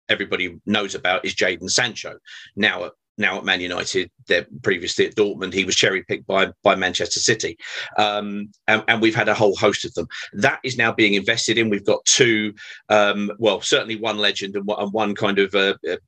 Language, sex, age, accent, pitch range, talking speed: English, male, 40-59, British, 95-115 Hz, 210 wpm